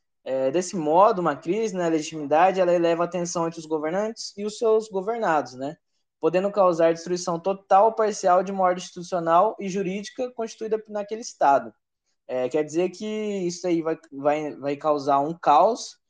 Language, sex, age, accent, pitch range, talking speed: Portuguese, male, 20-39, Brazilian, 150-195 Hz, 170 wpm